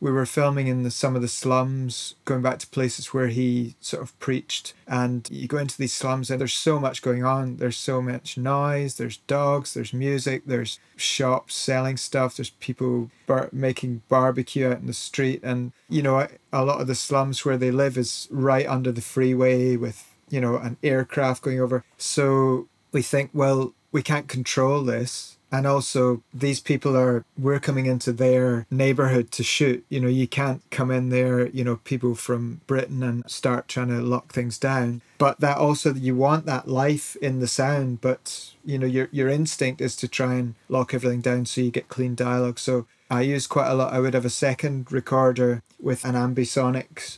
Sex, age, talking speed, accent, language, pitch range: male, 30-49, 195 wpm, British, English, 125-135 Hz